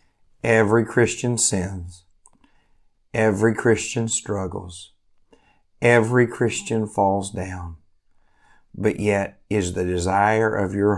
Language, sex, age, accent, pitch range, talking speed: English, male, 50-69, American, 90-105 Hz, 95 wpm